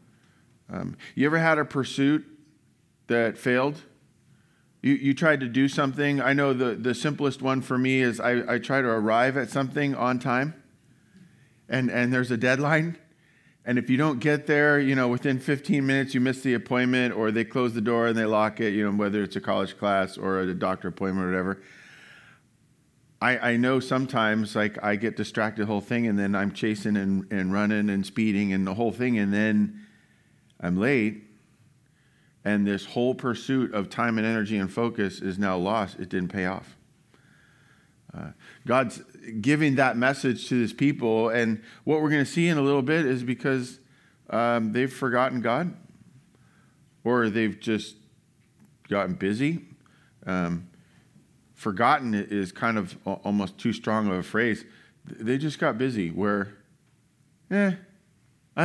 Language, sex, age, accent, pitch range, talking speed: English, male, 40-59, American, 105-140 Hz, 170 wpm